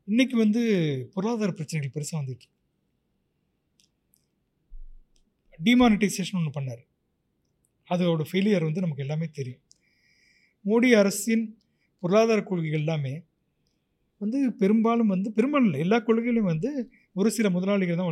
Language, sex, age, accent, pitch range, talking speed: Tamil, male, 30-49, native, 160-225 Hz, 105 wpm